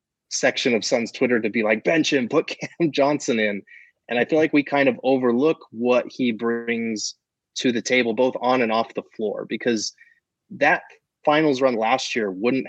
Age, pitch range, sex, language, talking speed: 20-39, 110-130 Hz, male, English, 190 wpm